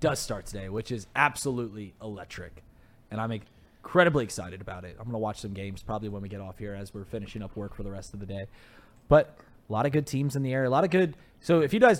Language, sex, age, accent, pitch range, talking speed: English, male, 20-39, American, 105-140 Hz, 260 wpm